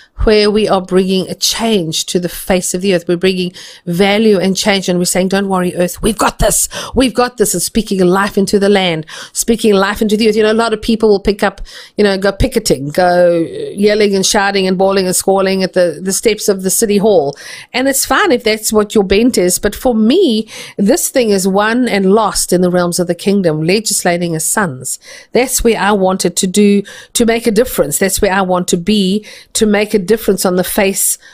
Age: 50-69